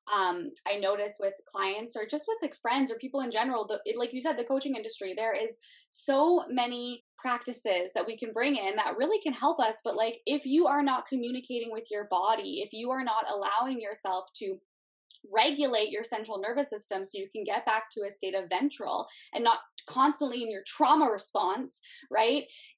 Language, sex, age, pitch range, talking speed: English, female, 10-29, 215-285 Hz, 205 wpm